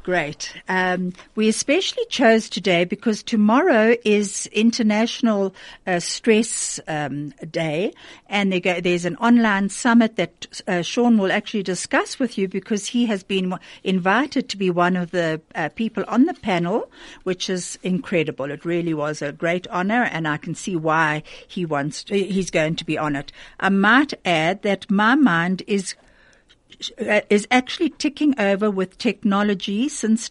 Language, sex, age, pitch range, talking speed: German, female, 60-79, 175-230 Hz, 160 wpm